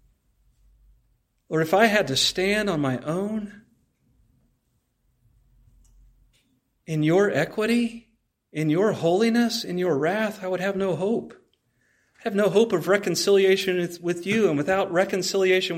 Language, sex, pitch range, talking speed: English, male, 125-175 Hz, 130 wpm